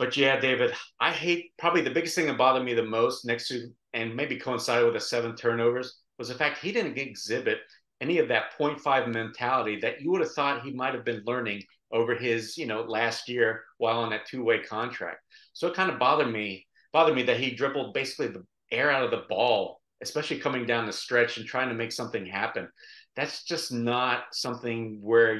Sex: male